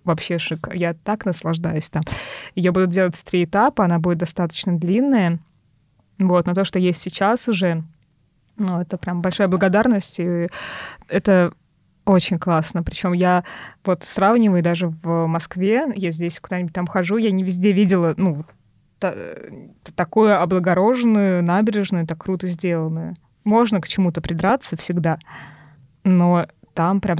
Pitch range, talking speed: 170-195 Hz, 140 wpm